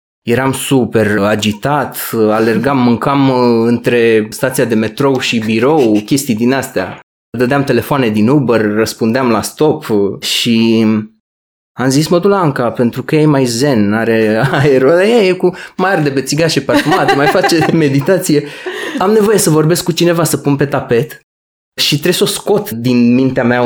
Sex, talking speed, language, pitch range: male, 155 wpm, Romanian, 115-150 Hz